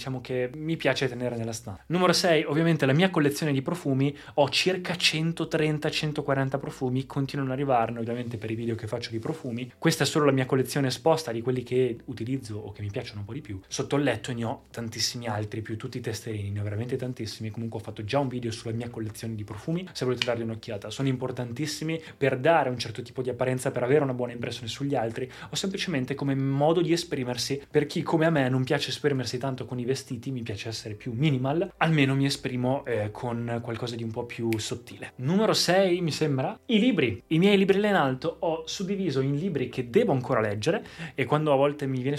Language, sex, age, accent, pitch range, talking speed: Italian, male, 20-39, native, 120-150 Hz, 220 wpm